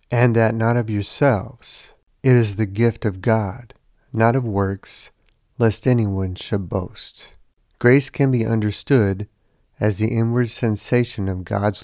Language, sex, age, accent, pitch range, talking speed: English, male, 50-69, American, 105-120 Hz, 140 wpm